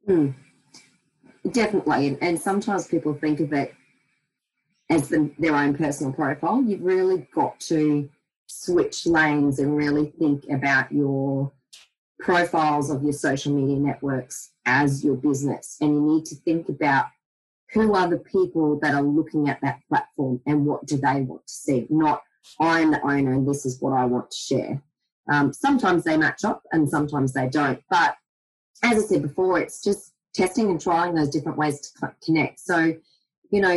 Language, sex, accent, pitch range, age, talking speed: English, female, Australian, 145-185 Hz, 30-49, 170 wpm